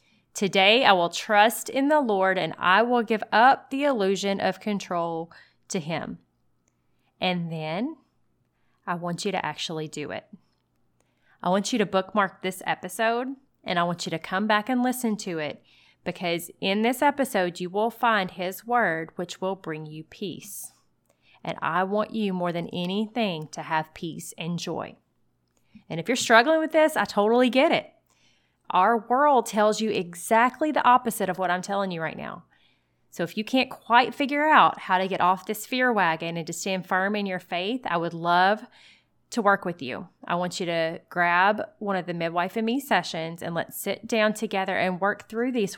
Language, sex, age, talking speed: English, female, 30-49, 190 wpm